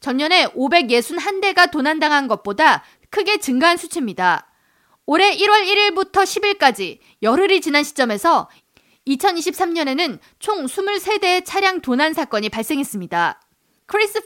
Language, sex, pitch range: Korean, female, 255-370 Hz